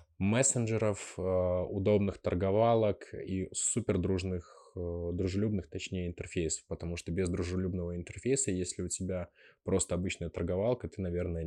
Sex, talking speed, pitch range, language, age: male, 115 wpm, 85-95 Hz, Russian, 20-39